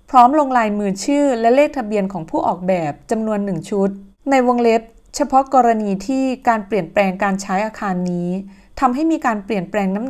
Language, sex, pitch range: Thai, female, 190-255 Hz